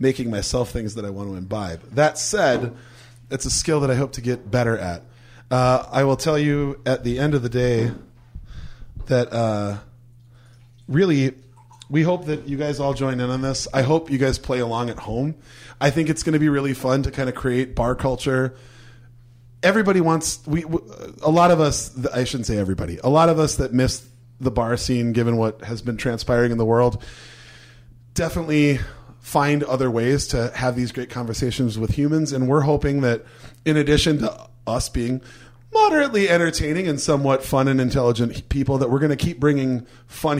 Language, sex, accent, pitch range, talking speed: English, male, American, 120-150 Hz, 190 wpm